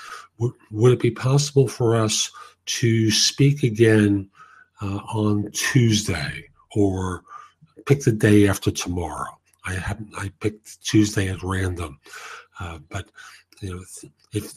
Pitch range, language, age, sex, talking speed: 105-130 Hz, English, 50-69, male, 130 wpm